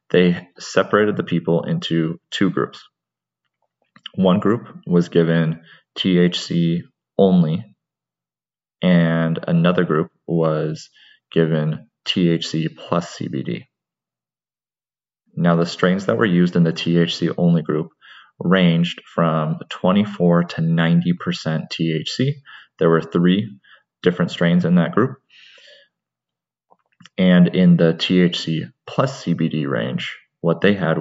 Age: 30-49